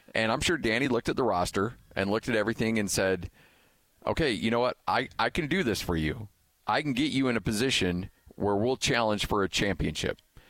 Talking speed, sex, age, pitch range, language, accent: 215 wpm, male, 40-59, 95-120 Hz, English, American